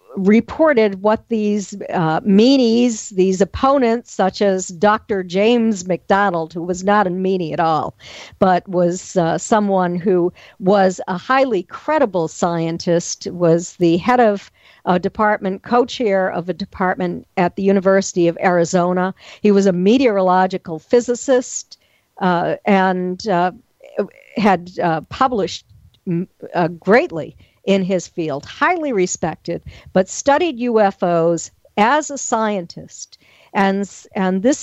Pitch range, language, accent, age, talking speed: 185-230 Hz, English, American, 50-69, 125 wpm